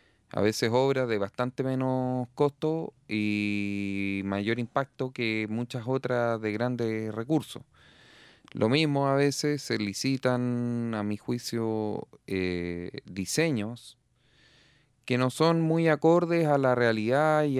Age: 30-49